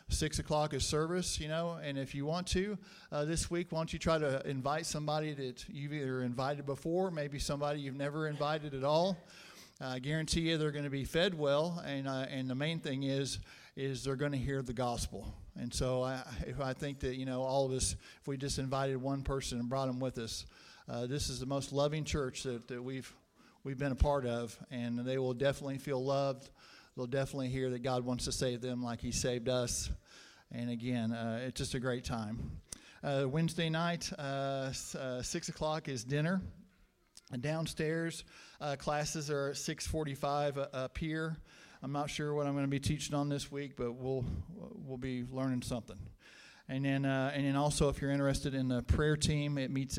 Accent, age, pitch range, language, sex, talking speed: American, 50-69, 130-150 Hz, English, male, 210 wpm